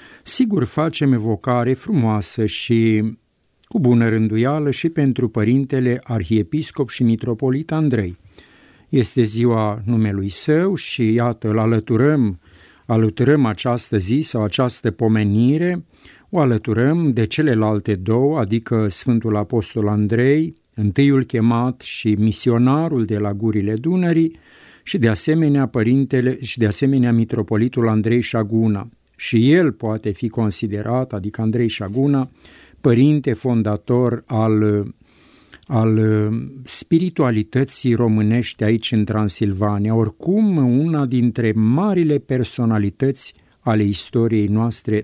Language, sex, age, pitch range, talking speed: Romanian, male, 50-69, 110-135 Hz, 110 wpm